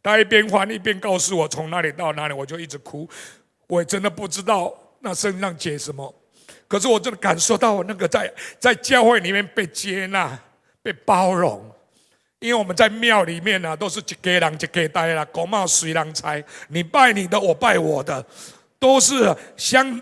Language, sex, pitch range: Chinese, male, 175-225 Hz